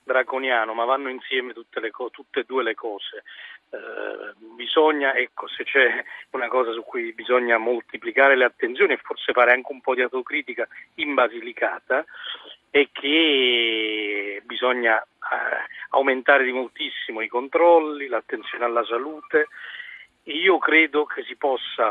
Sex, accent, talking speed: male, native, 140 wpm